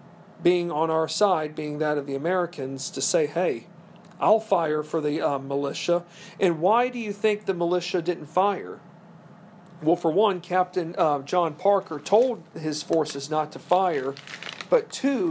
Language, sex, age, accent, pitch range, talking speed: English, male, 40-59, American, 155-185 Hz, 165 wpm